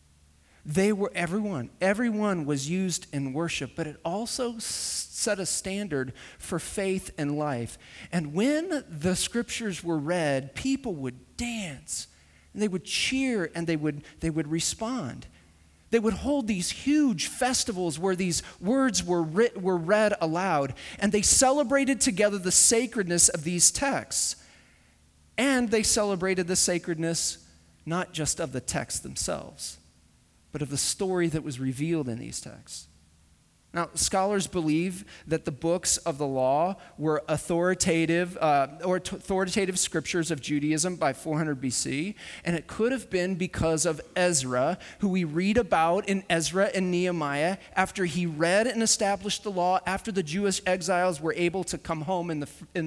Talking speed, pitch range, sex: 150 wpm, 150-200 Hz, male